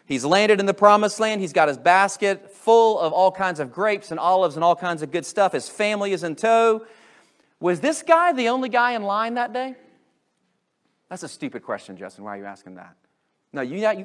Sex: male